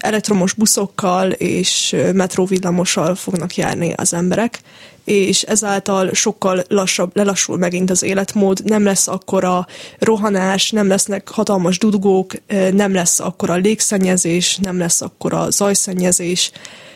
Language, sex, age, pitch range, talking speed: Hungarian, female, 20-39, 180-200 Hz, 120 wpm